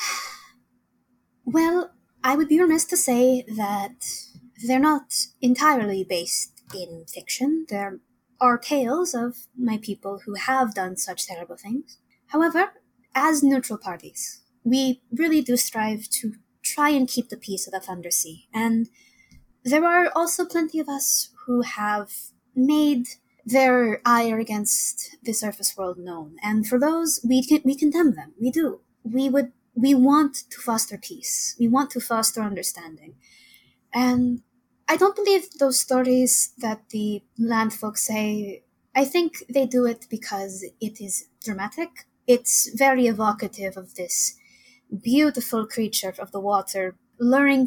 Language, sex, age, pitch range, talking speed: English, female, 20-39, 210-270 Hz, 145 wpm